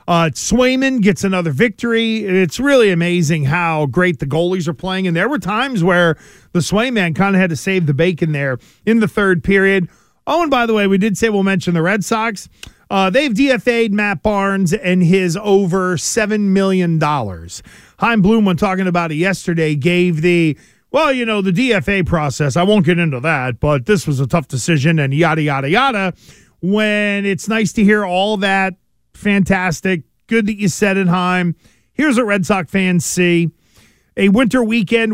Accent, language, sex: American, English, male